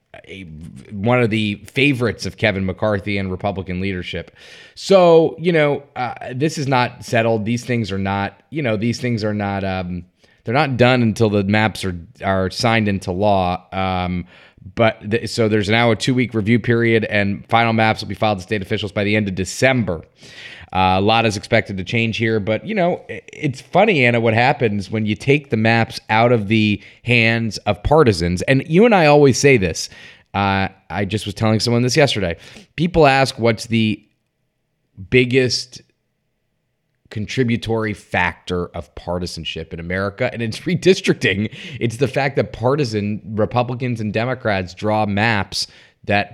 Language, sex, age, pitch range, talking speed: English, male, 30-49, 100-125 Hz, 170 wpm